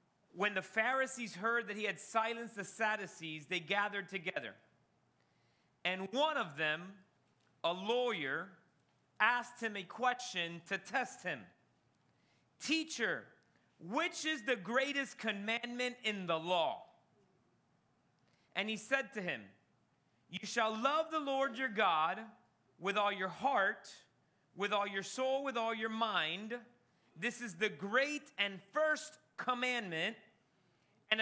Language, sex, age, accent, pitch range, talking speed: English, male, 30-49, American, 195-265 Hz, 130 wpm